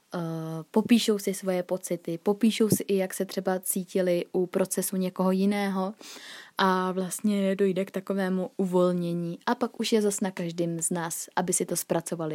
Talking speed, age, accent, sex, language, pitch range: 165 wpm, 20-39, native, female, Czech, 175-205 Hz